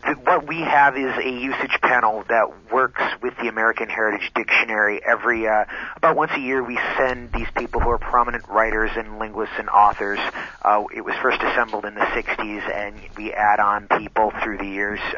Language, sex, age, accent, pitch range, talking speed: English, male, 30-49, American, 105-125 Hz, 190 wpm